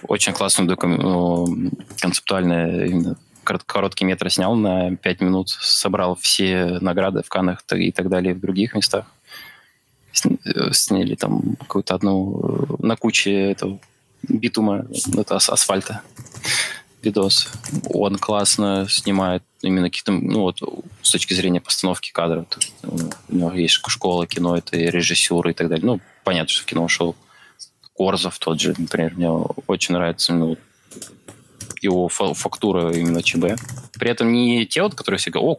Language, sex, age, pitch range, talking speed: Russian, male, 20-39, 85-100 Hz, 140 wpm